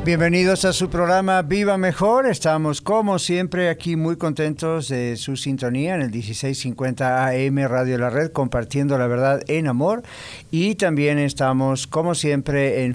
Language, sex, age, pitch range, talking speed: English, male, 50-69, 130-155 Hz, 155 wpm